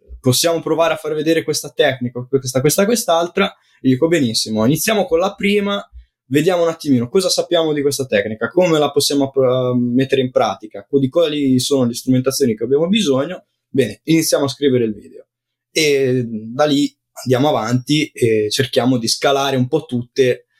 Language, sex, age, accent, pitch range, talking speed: Italian, male, 20-39, native, 110-140 Hz, 165 wpm